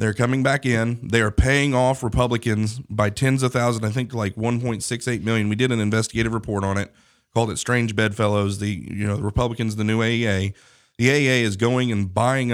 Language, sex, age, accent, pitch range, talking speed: English, male, 30-49, American, 110-130 Hz, 205 wpm